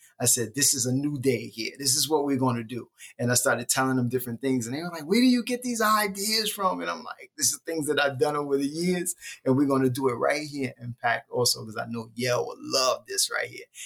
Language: English